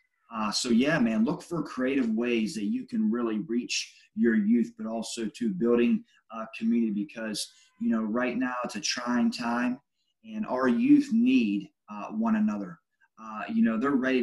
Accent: American